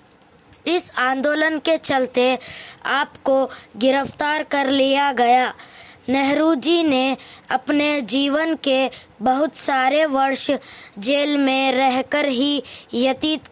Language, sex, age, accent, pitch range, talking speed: Telugu, female, 20-39, native, 255-300 Hz, 100 wpm